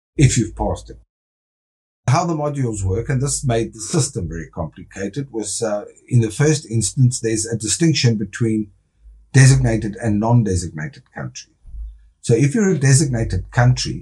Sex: male